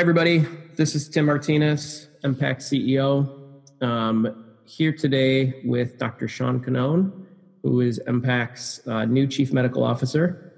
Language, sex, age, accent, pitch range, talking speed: English, male, 20-39, American, 120-140 Hz, 130 wpm